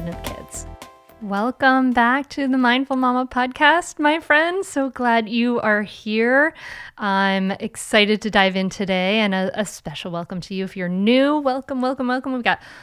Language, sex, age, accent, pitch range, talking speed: English, female, 30-49, American, 190-265 Hz, 175 wpm